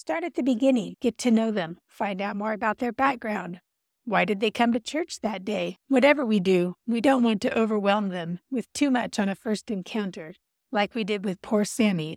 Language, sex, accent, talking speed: English, female, American, 215 wpm